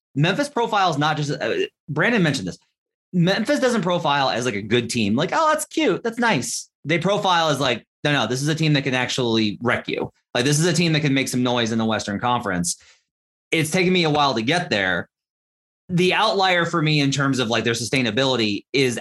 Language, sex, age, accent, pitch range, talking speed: English, male, 30-49, American, 120-170 Hz, 220 wpm